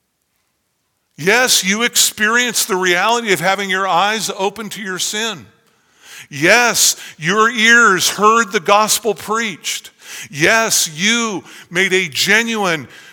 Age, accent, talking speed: 50-69, American, 115 wpm